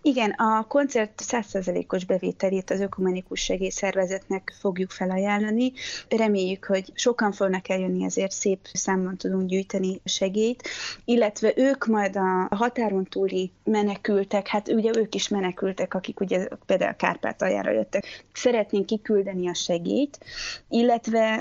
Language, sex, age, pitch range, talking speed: Hungarian, female, 30-49, 190-225 Hz, 130 wpm